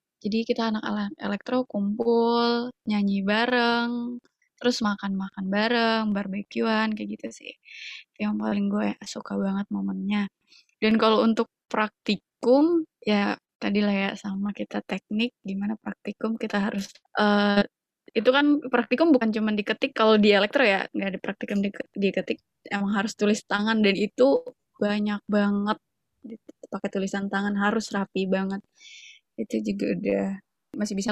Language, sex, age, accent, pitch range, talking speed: Indonesian, female, 20-39, native, 200-235 Hz, 130 wpm